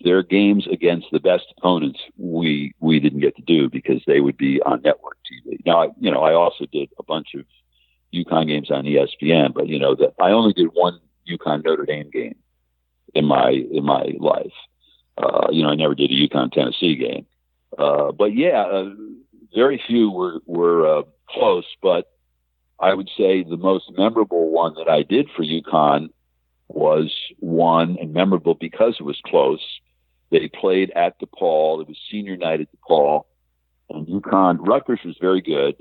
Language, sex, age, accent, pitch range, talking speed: English, male, 60-79, American, 70-90 Hz, 180 wpm